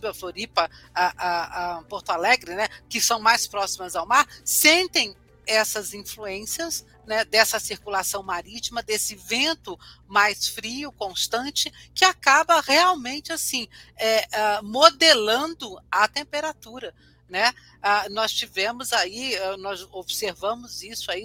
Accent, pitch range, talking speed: Brazilian, 195-240 Hz, 120 wpm